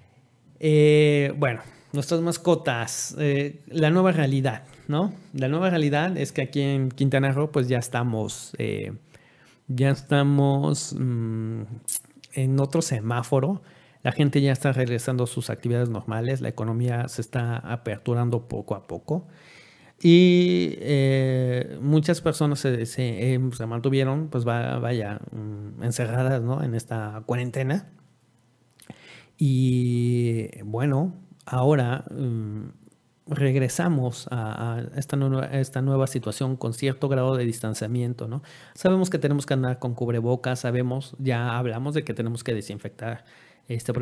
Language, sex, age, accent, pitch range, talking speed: Spanish, male, 40-59, Mexican, 120-145 Hz, 130 wpm